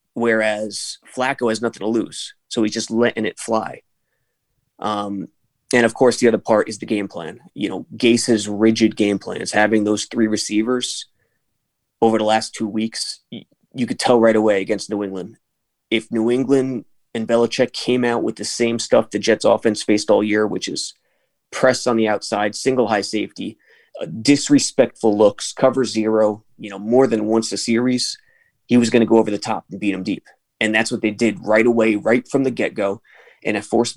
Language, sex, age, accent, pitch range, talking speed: English, male, 20-39, American, 110-125 Hz, 195 wpm